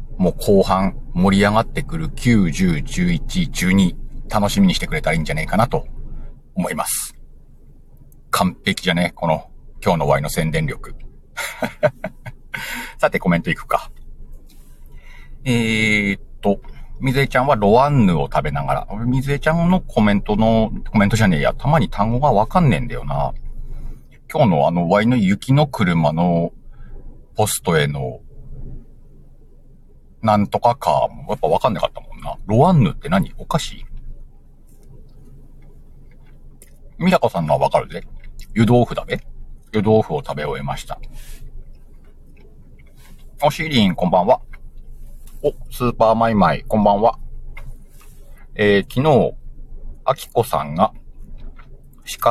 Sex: male